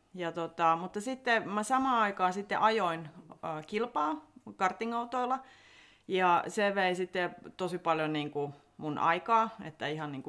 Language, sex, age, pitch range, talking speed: Finnish, female, 30-49, 150-195 Hz, 140 wpm